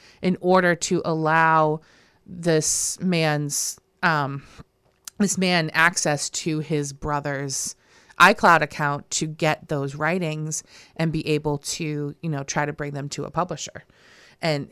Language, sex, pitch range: English, female, 145-175 Hz